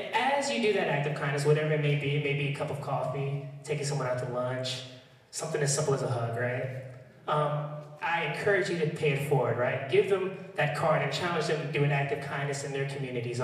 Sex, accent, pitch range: male, American, 130-155 Hz